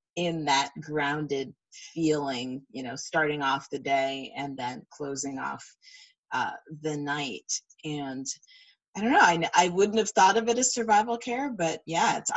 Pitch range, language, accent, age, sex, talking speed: 145-215 Hz, English, American, 30-49, female, 160 wpm